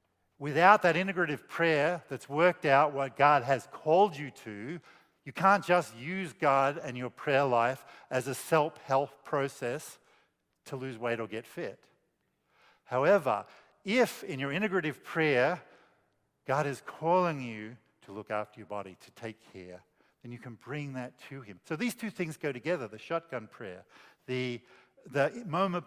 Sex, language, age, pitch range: male, English, 50-69, 120-165 Hz